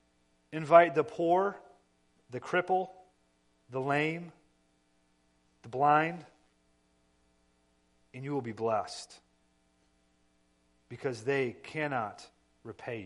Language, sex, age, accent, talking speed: English, male, 40-59, American, 85 wpm